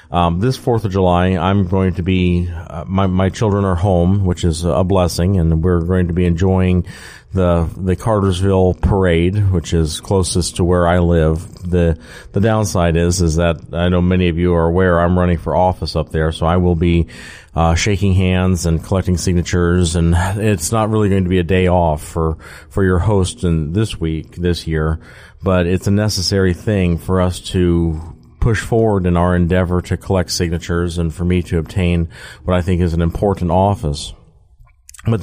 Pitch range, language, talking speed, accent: 85-100 Hz, English, 190 wpm, American